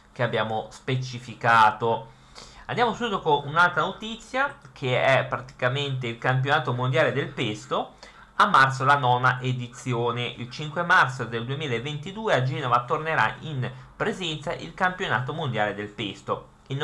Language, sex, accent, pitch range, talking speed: Italian, male, native, 115-150 Hz, 130 wpm